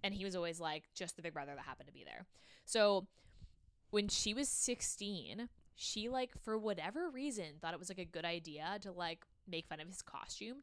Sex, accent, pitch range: female, American, 170-220 Hz